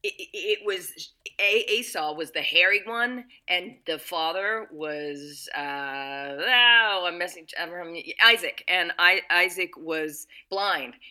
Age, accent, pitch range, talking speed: 40-59, American, 150-240 Hz, 120 wpm